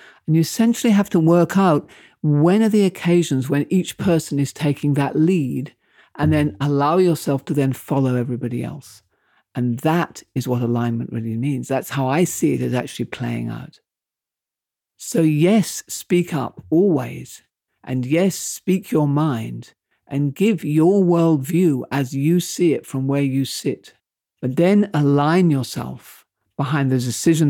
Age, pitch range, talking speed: 50-69, 125-165 Hz, 155 wpm